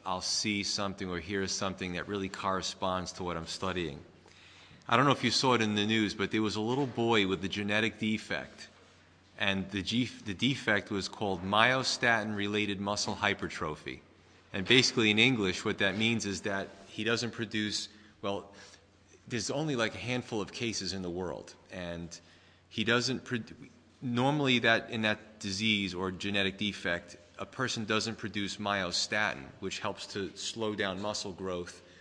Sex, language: male, English